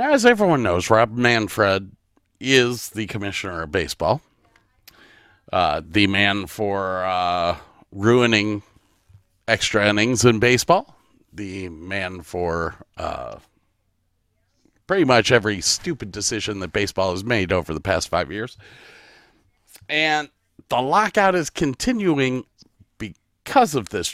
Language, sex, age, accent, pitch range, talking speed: English, male, 50-69, American, 95-125 Hz, 115 wpm